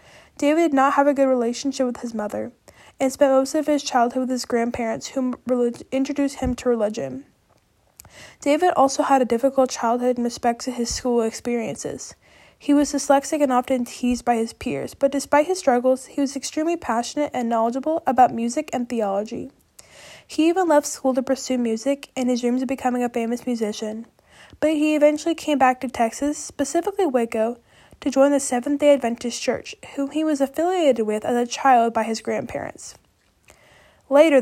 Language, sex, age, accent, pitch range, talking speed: English, female, 10-29, American, 235-280 Hz, 175 wpm